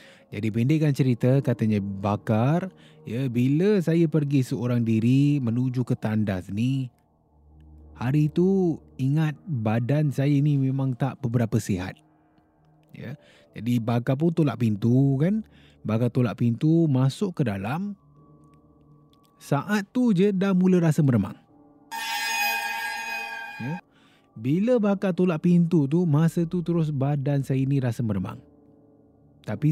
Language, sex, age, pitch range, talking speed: Malay, male, 20-39, 110-155 Hz, 120 wpm